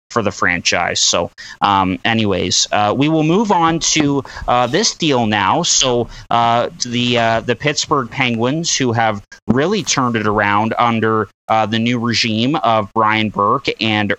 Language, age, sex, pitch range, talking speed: English, 30-49, male, 115-140 Hz, 165 wpm